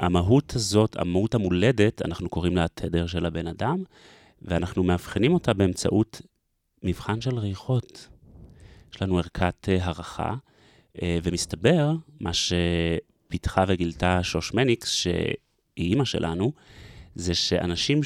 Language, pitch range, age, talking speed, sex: Hebrew, 85-110 Hz, 30-49, 105 wpm, male